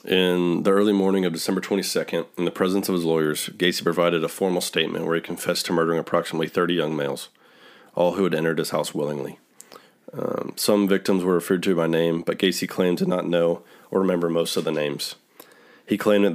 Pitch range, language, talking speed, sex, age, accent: 85-95 Hz, English, 210 wpm, male, 30-49, American